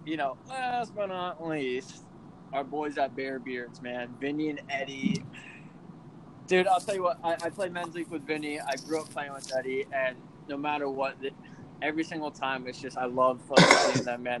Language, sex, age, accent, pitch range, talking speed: English, male, 20-39, American, 130-155 Hz, 195 wpm